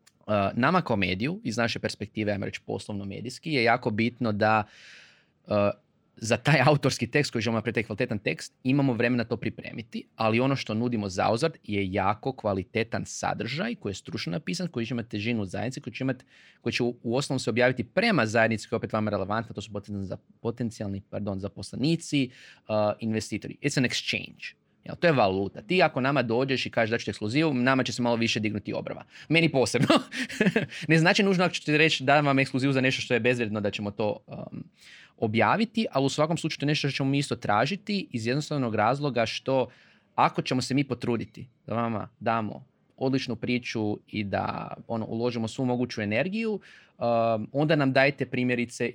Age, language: 20-39, Croatian